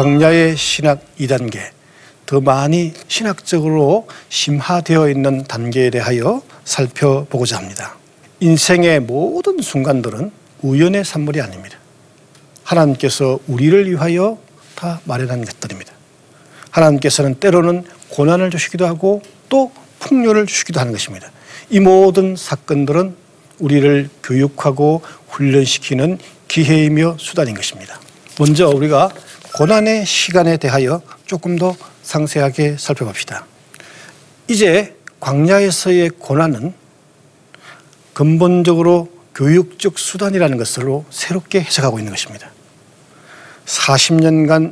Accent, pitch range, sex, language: native, 140-175 Hz, male, Korean